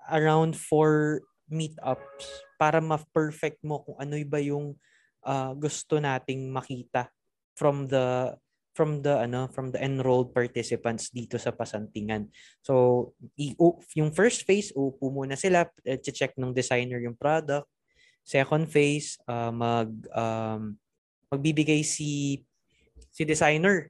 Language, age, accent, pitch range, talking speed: Filipino, 20-39, native, 125-155 Hz, 120 wpm